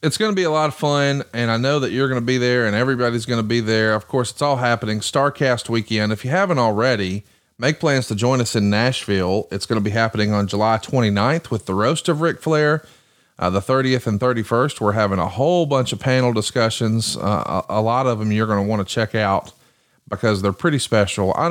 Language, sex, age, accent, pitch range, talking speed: English, male, 40-59, American, 105-135 Hz, 240 wpm